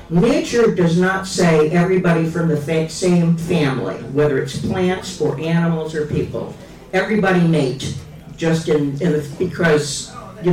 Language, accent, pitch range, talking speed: Italian, American, 145-175 Hz, 135 wpm